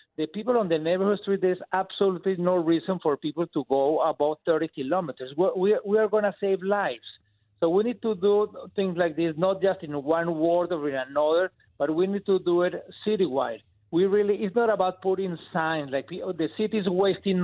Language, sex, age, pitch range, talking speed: English, male, 50-69, 160-195 Hz, 200 wpm